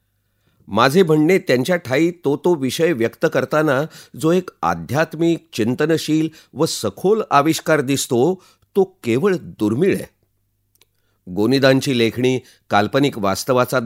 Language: Marathi